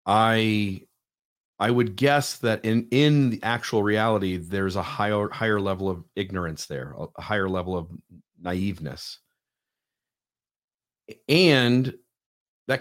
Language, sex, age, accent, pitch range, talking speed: English, male, 40-59, American, 95-120 Hz, 115 wpm